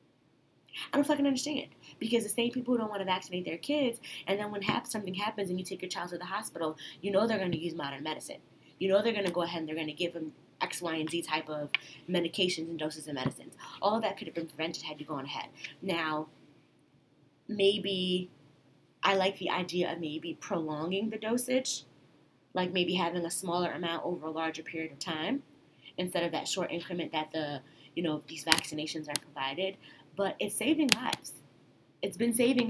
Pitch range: 160-200 Hz